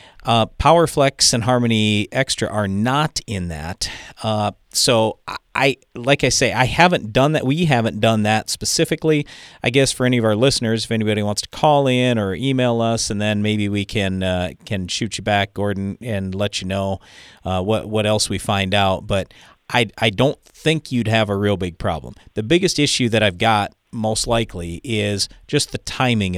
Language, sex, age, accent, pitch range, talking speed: English, male, 40-59, American, 100-130 Hz, 195 wpm